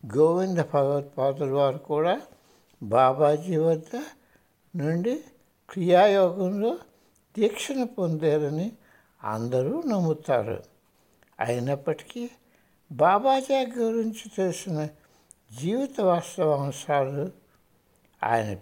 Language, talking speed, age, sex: Hindi, 50 wpm, 60-79, male